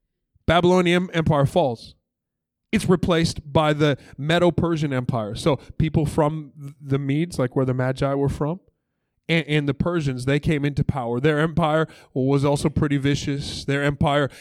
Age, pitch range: 20-39, 145-205 Hz